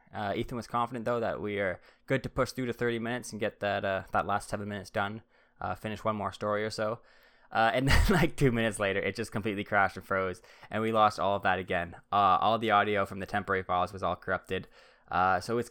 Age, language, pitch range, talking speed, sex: 20-39, English, 100-115 Hz, 250 wpm, male